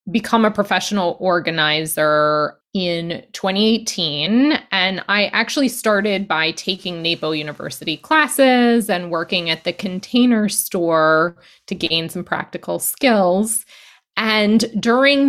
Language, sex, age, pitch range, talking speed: English, female, 20-39, 160-220 Hz, 110 wpm